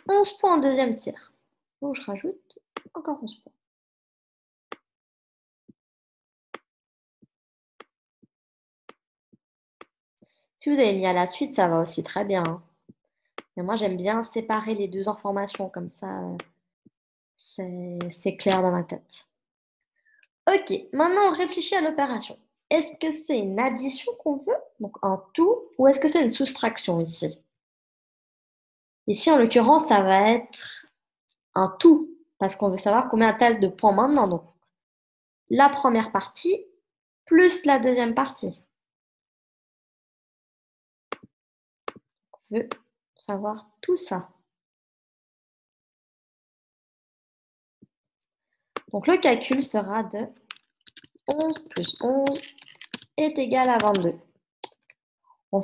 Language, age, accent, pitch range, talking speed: French, 20-39, French, 200-315 Hz, 110 wpm